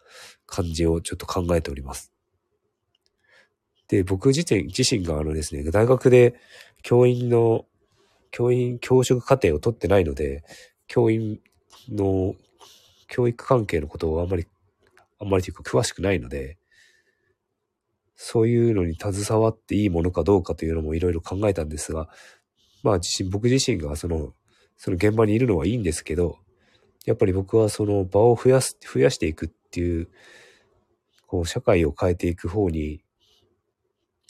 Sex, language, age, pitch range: male, Japanese, 40-59, 85-115 Hz